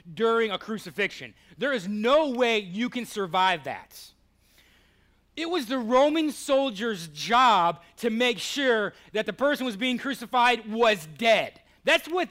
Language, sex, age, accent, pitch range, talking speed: English, male, 30-49, American, 195-245 Hz, 150 wpm